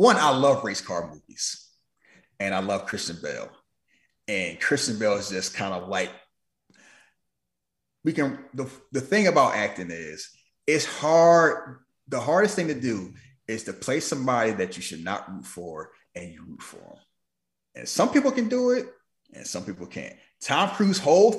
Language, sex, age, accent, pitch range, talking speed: English, male, 30-49, American, 130-215 Hz, 175 wpm